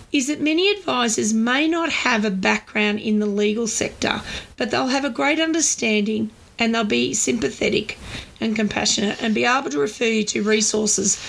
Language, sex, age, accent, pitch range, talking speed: English, female, 40-59, Australian, 210-260 Hz, 175 wpm